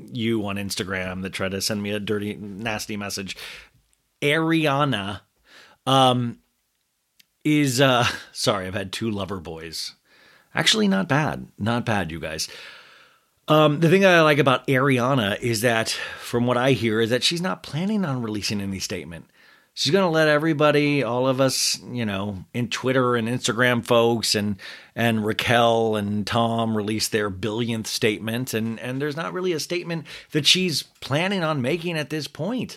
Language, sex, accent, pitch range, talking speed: English, male, American, 110-150 Hz, 165 wpm